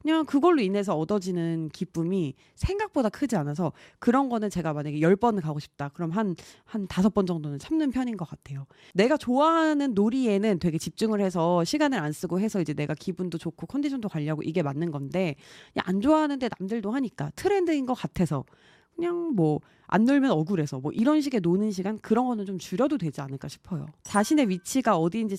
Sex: female